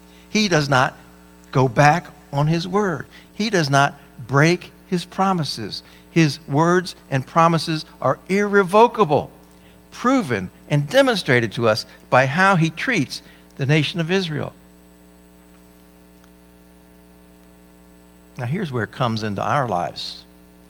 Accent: American